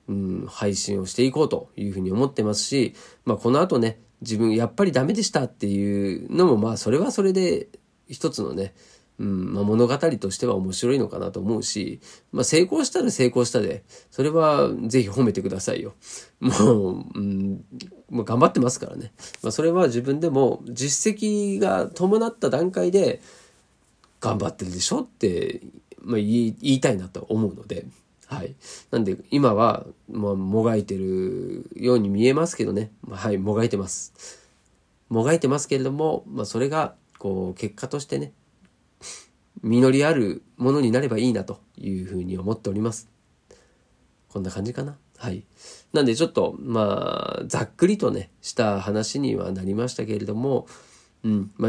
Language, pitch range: Japanese, 100-135 Hz